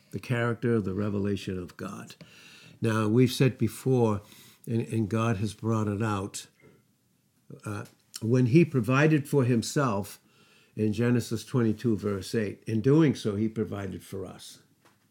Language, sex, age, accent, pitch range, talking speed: English, male, 60-79, American, 105-125 Hz, 140 wpm